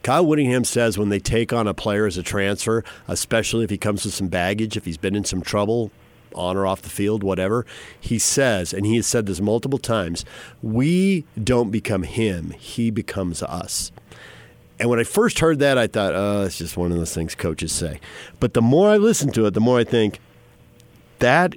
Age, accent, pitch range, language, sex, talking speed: 50-69, American, 100-135 Hz, English, male, 210 wpm